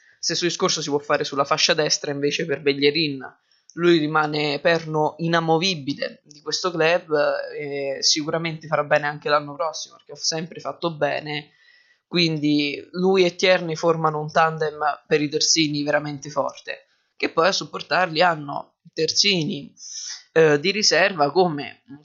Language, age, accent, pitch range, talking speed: Italian, 20-39, native, 150-170 Hz, 145 wpm